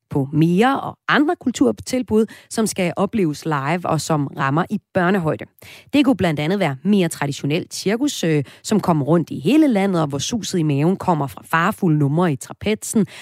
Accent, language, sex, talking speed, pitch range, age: native, Danish, female, 175 wpm, 150-210 Hz, 30-49